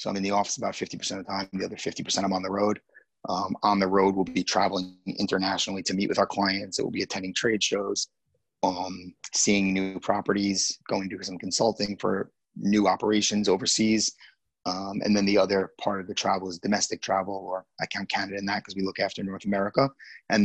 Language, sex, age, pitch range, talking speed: English, male, 30-49, 95-105 Hz, 215 wpm